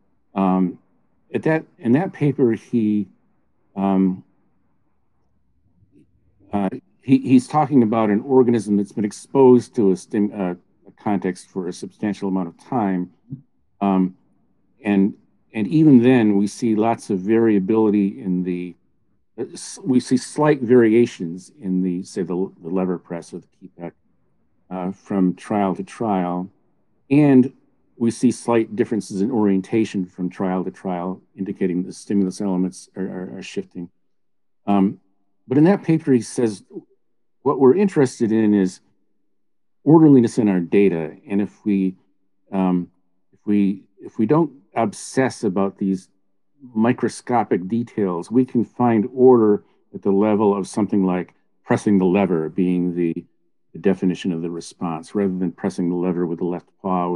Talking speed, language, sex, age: 145 wpm, English, male, 50-69